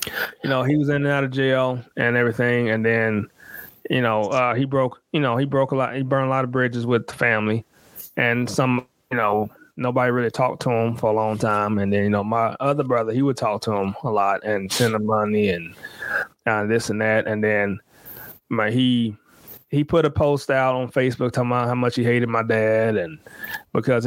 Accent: American